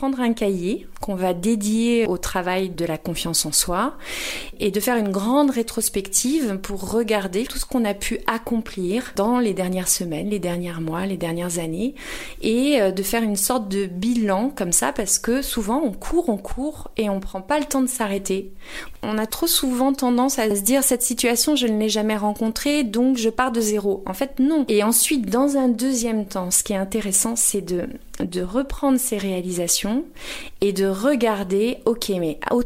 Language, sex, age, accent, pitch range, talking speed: French, female, 30-49, French, 185-245 Hz, 195 wpm